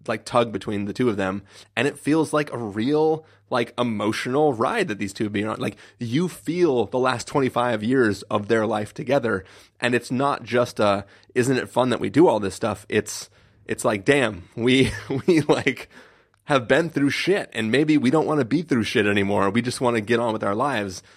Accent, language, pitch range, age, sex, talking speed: American, English, 105-135 Hz, 30-49, male, 215 wpm